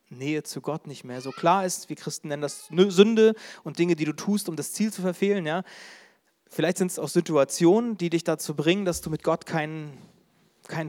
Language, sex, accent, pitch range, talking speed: German, male, German, 150-190 Hz, 215 wpm